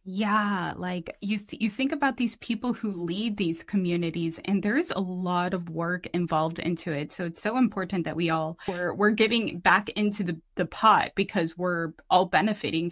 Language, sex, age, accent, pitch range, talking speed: English, female, 20-39, American, 190-235 Hz, 195 wpm